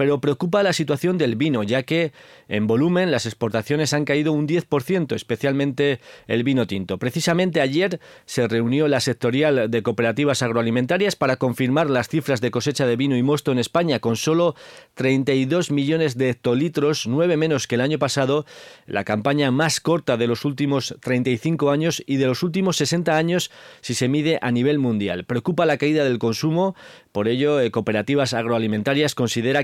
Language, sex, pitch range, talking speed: Spanish, male, 120-155 Hz, 170 wpm